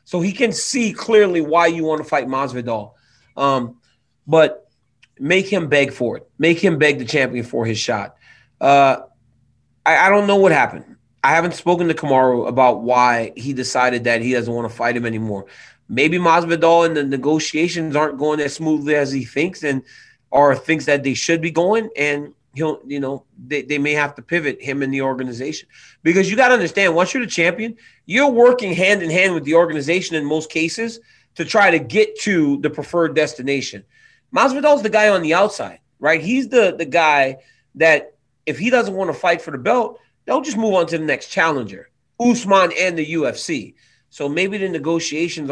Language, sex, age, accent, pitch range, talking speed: English, male, 30-49, American, 130-175 Hz, 195 wpm